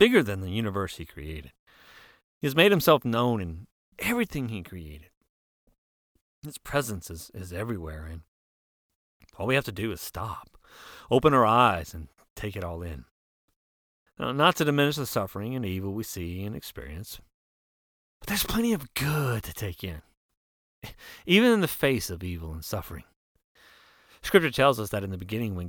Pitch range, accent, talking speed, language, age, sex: 90-140 Hz, American, 165 wpm, English, 30-49, male